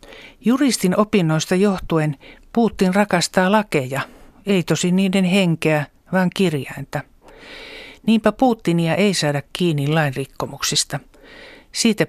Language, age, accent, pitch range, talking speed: Finnish, 60-79, native, 150-195 Hz, 95 wpm